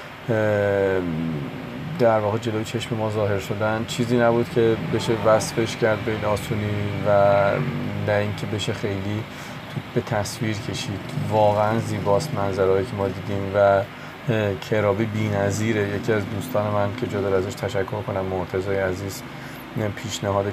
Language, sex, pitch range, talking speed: Persian, male, 100-120 Hz, 130 wpm